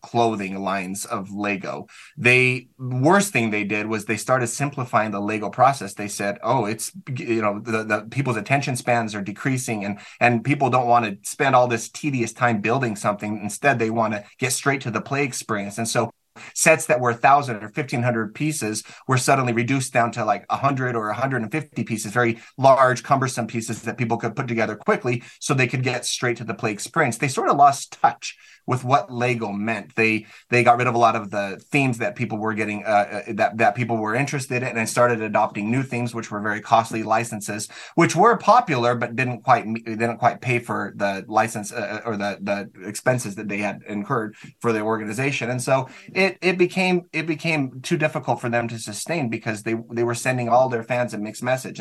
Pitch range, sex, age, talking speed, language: 110-130 Hz, male, 20-39, 205 wpm, English